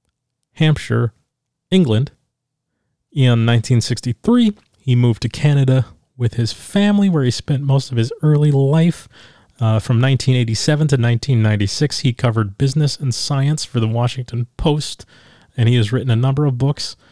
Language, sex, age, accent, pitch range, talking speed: English, male, 30-49, American, 115-140 Hz, 145 wpm